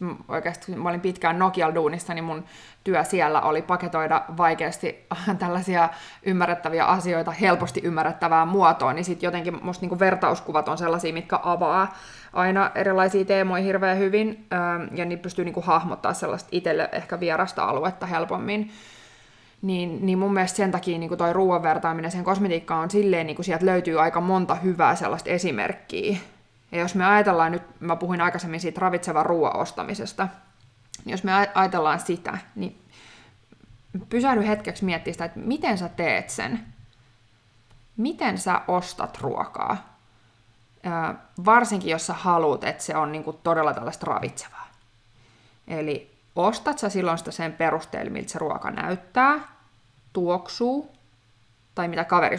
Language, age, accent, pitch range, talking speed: Finnish, 20-39, native, 155-190 Hz, 135 wpm